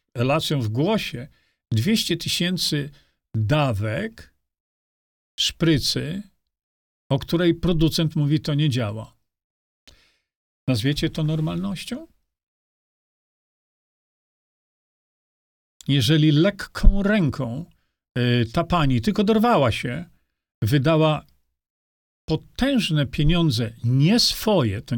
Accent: native